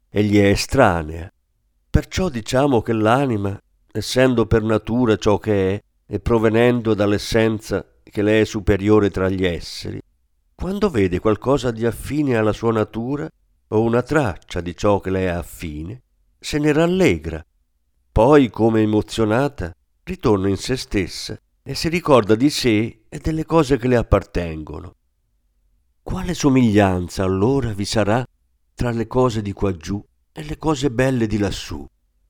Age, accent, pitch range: 50-69, native, 95-125 Hz